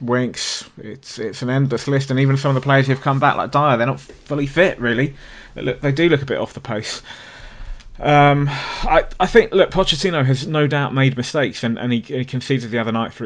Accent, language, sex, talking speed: British, English, male, 245 wpm